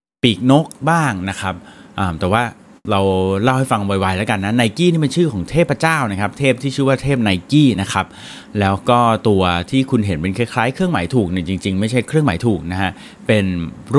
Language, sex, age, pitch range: Thai, male, 30-49, 95-135 Hz